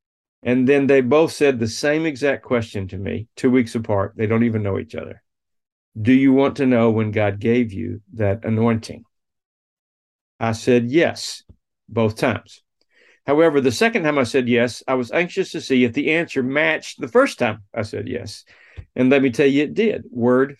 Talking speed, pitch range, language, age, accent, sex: 190 wpm, 110-140 Hz, English, 50-69, American, male